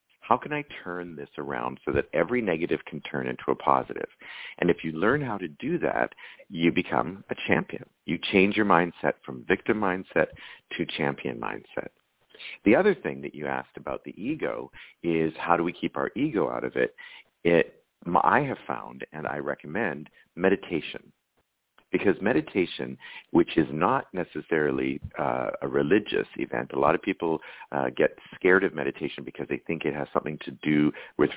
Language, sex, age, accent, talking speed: English, male, 50-69, American, 175 wpm